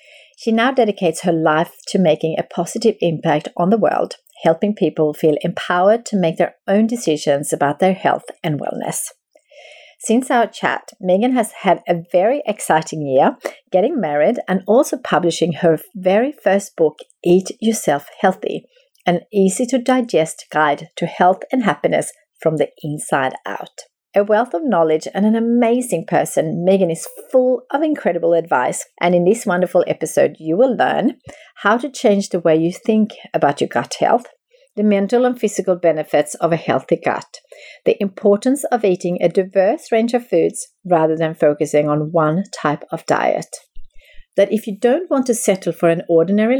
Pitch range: 165-235 Hz